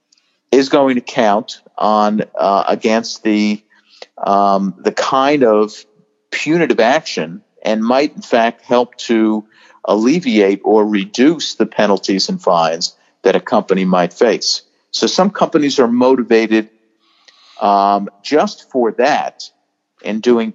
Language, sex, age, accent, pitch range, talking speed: English, male, 50-69, American, 100-120 Hz, 125 wpm